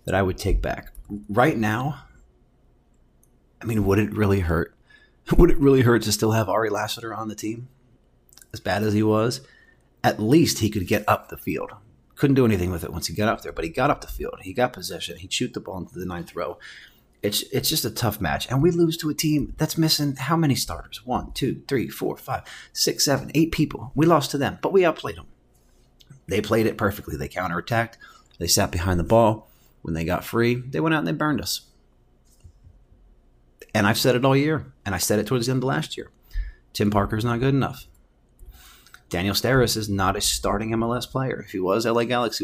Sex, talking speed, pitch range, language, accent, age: male, 220 wpm, 95-130 Hz, English, American, 30-49